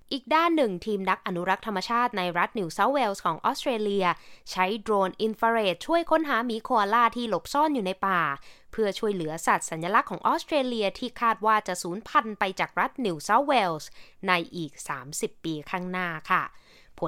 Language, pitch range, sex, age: Thai, 180-275 Hz, female, 20-39